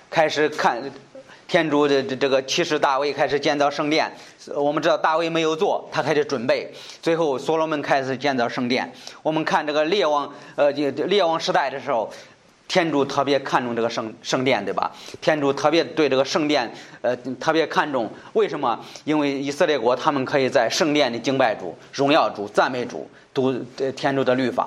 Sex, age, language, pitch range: male, 30-49, Chinese, 135-160 Hz